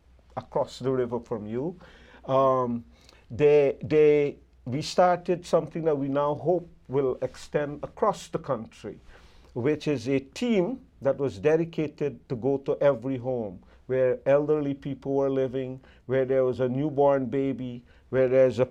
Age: 50-69